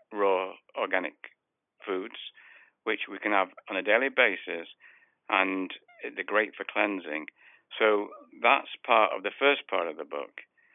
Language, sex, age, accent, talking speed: English, male, 60-79, British, 145 wpm